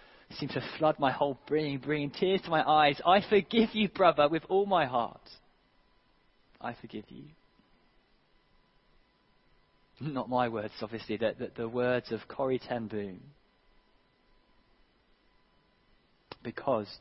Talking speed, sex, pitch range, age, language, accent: 125 wpm, male, 115-145 Hz, 20-39, English, British